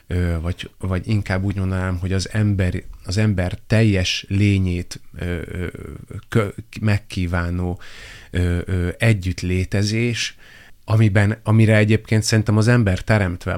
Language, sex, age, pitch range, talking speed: Hungarian, male, 30-49, 95-110 Hz, 115 wpm